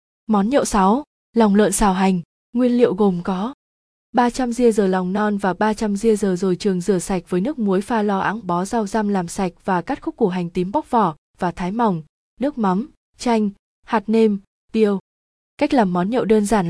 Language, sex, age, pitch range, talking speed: Vietnamese, female, 20-39, 185-230 Hz, 210 wpm